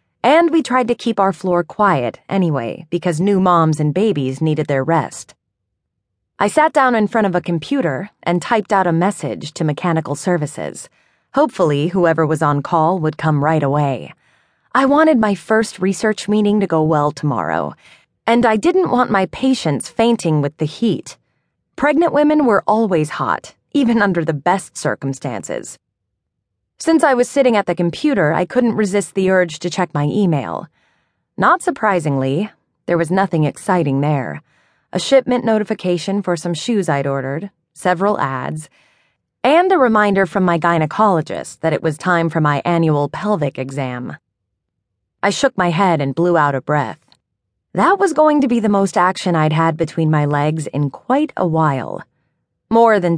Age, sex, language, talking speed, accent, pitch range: 30-49, female, English, 165 wpm, American, 150-215 Hz